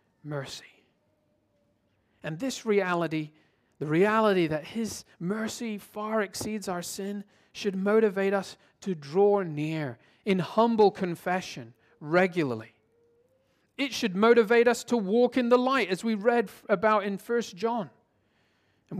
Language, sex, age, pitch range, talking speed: English, male, 40-59, 165-225 Hz, 125 wpm